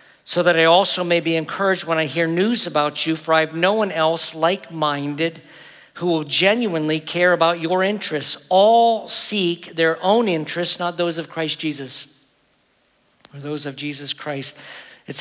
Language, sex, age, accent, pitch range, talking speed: English, male, 50-69, American, 160-185 Hz, 175 wpm